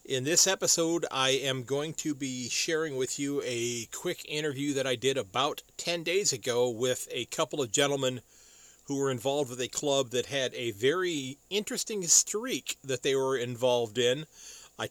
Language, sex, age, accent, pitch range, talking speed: English, male, 40-59, American, 120-145 Hz, 175 wpm